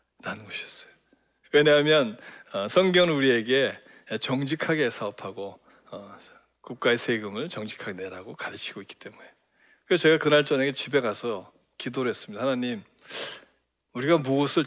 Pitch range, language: 115-165 Hz, Korean